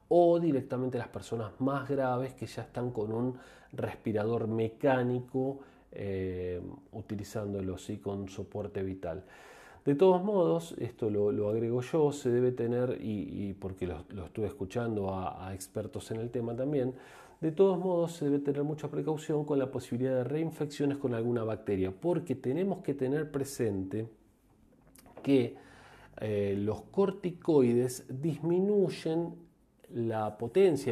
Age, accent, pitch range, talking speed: 40-59, Argentinian, 105-145 Hz, 140 wpm